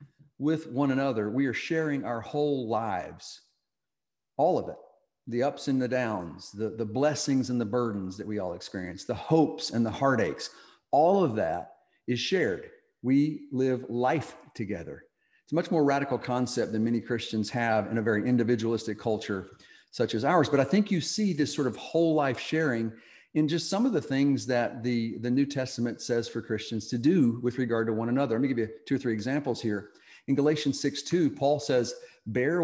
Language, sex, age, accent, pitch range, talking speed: English, male, 50-69, American, 115-145 Hz, 195 wpm